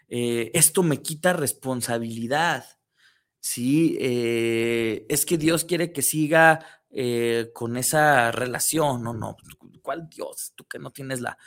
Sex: male